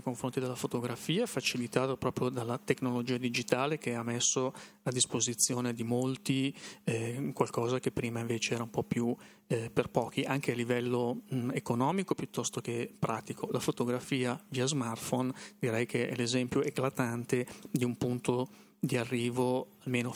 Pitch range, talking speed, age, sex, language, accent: 120-140 Hz, 145 wpm, 30-49, male, Italian, native